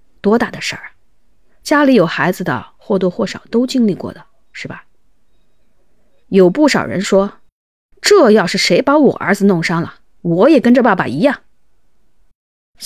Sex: female